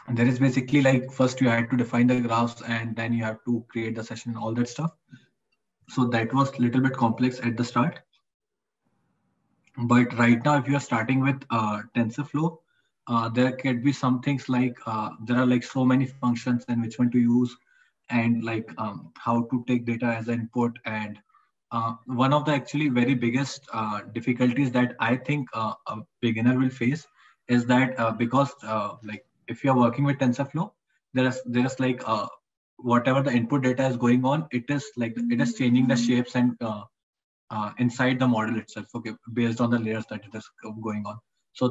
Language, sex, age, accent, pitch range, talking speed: English, male, 20-39, Indian, 115-130 Hz, 200 wpm